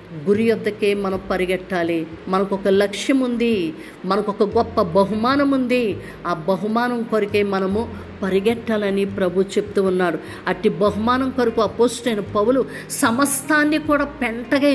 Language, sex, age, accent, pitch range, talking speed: Telugu, female, 50-69, native, 200-270 Hz, 115 wpm